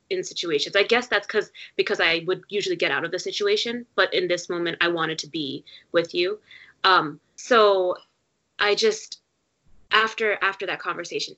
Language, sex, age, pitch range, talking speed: English, female, 20-39, 170-225 Hz, 175 wpm